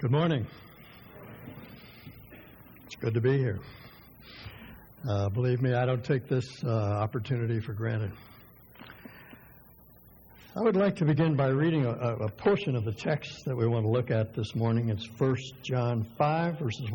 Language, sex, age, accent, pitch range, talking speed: English, male, 60-79, American, 110-145 Hz, 155 wpm